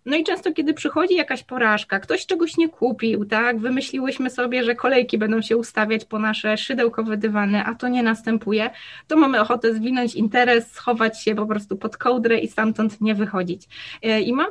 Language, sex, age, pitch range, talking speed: Polish, female, 20-39, 225-285 Hz, 180 wpm